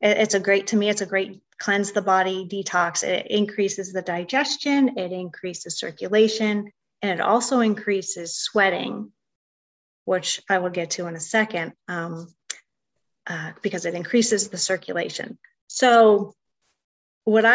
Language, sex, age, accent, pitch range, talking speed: English, female, 30-49, American, 190-225 Hz, 140 wpm